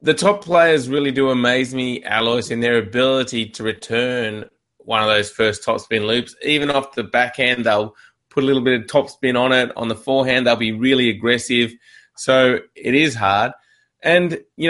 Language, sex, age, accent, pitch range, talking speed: English, male, 20-39, Australian, 115-150 Hz, 185 wpm